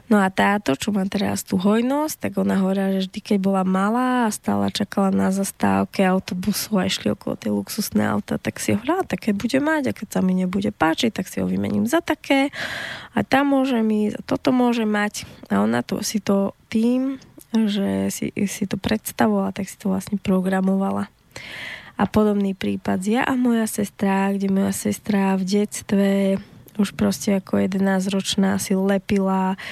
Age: 20-39